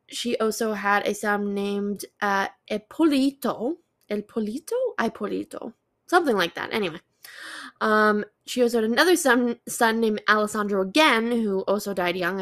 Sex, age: female, 10-29